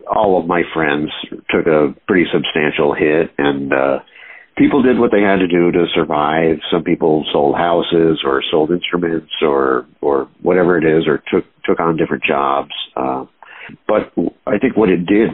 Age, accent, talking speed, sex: 50-69, American, 175 wpm, male